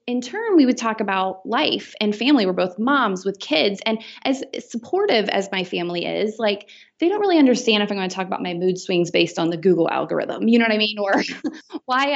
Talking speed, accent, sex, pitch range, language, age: 230 wpm, American, female, 185-245 Hz, English, 20-39